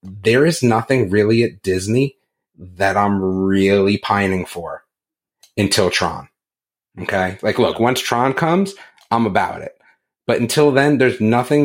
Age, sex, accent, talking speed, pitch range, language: 30-49, male, American, 140 wpm, 95-135 Hz, English